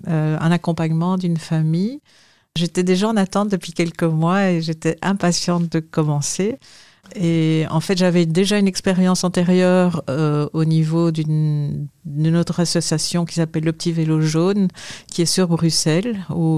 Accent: French